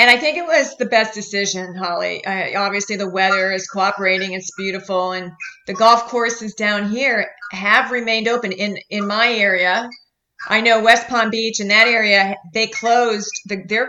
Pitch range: 195-230 Hz